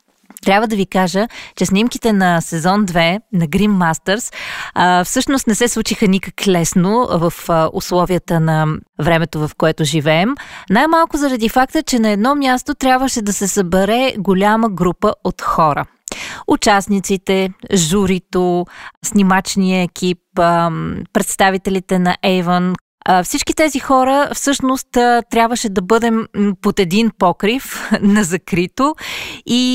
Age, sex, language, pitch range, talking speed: 20-39, female, Bulgarian, 175-220 Hz, 125 wpm